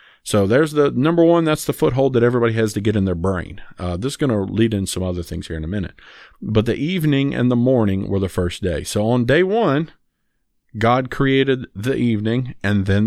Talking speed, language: 230 wpm, English